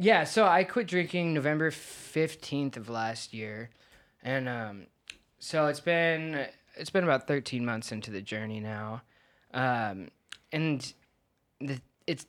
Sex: male